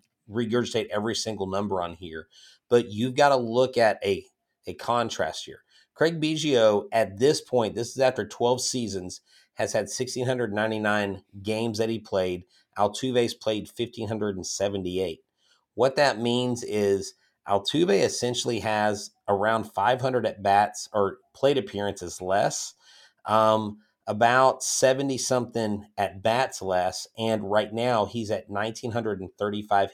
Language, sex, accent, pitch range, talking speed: English, male, American, 100-120 Hz, 130 wpm